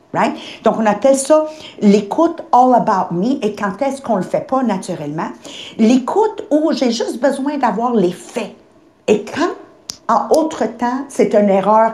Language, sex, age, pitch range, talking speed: English, female, 50-69, 195-265 Hz, 175 wpm